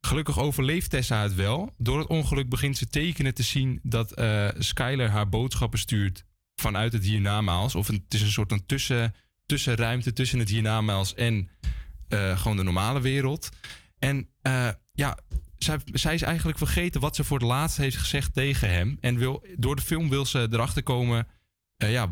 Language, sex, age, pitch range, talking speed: Dutch, male, 20-39, 105-135 Hz, 180 wpm